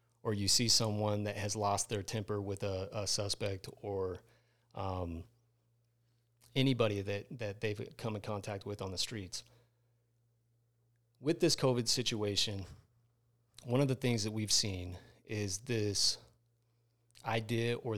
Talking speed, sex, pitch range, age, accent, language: 135 wpm, male, 105-120 Hz, 30-49, American, English